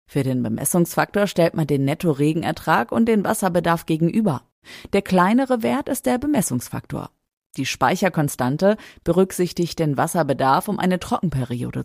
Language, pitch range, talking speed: German, 135-185 Hz, 125 wpm